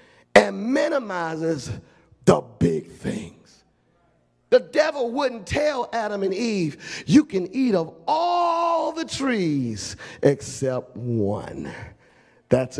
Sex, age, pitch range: male, 40-59, 135-210 Hz